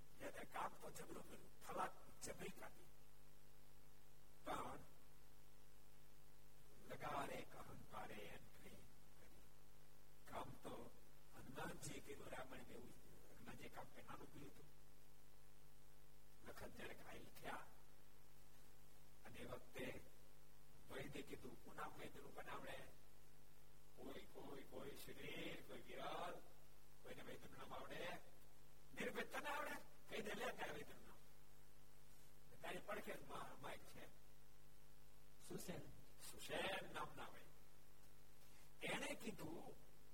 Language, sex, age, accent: Gujarati, male, 60-79, native